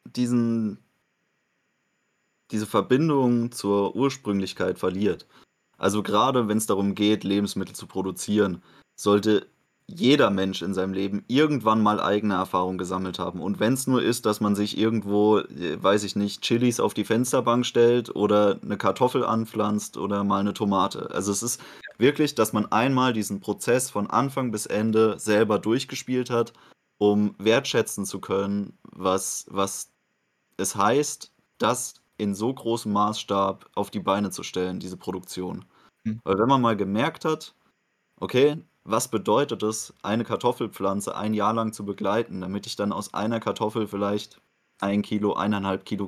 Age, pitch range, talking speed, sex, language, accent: 20-39, 100-115 Hz, 150 wpm, male, German, German